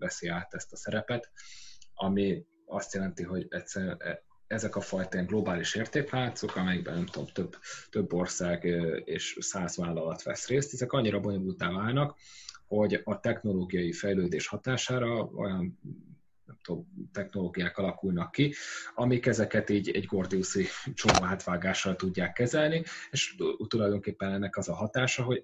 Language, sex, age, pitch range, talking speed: Hungarian, male, 30-49, 90-125 Hz, 125 wpm